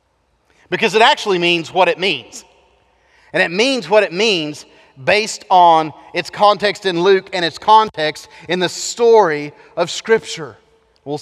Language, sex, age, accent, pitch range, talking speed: English, male, 40-59, American, 150-195 Hz, 150 wpm